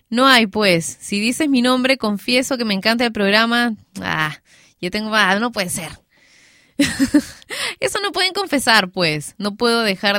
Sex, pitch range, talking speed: female, 190-255 Hz, 165 wpm